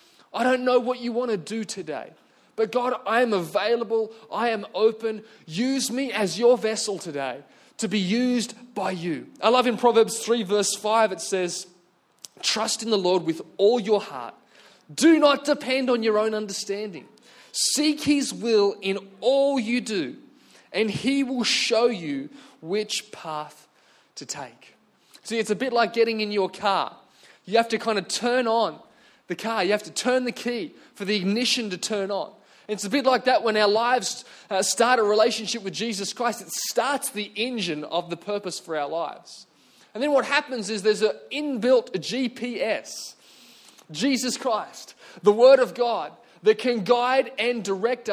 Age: 20-39